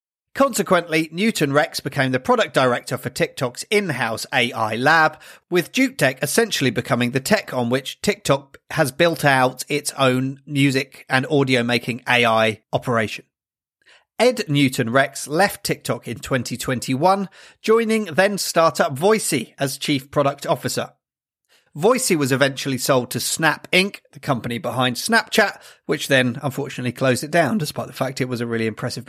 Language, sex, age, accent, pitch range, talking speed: English, male, 40-59, British, 130-175 Hz, 150 wpm